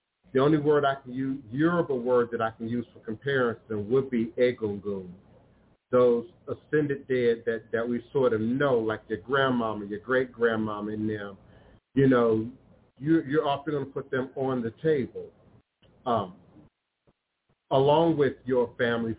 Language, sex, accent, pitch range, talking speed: English, male, American, 110-140 Hz, 155 wpm